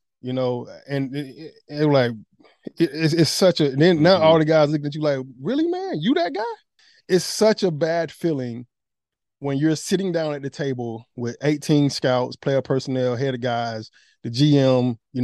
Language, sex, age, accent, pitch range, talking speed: English, male, 20-39, American, 130-185 Hz, 195 wpm